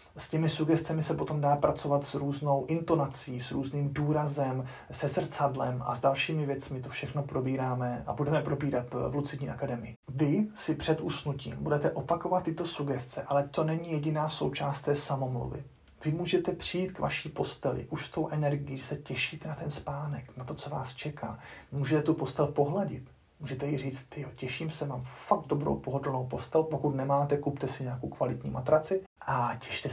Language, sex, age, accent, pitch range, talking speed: Czech, male, 30-49, native, 135-155 Hz, 175 wpm